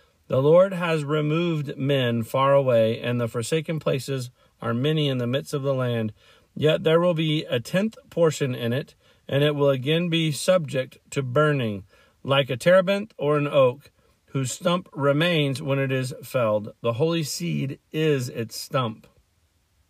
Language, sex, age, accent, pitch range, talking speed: English, male, 40-59, American, 130-165 Hz, 165 wpm